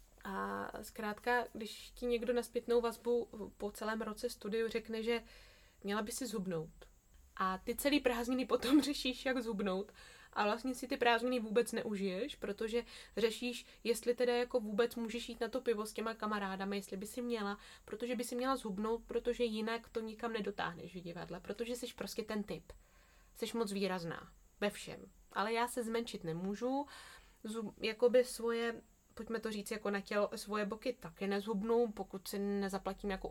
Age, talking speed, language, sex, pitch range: 20-39, 170 wpm, Czech, female, 205-245 Hz